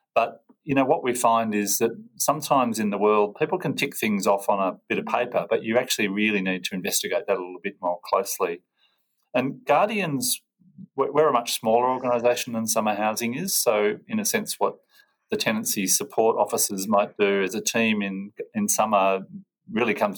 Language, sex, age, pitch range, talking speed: English, male, 40-59, 100-150 Hz, 195 wpm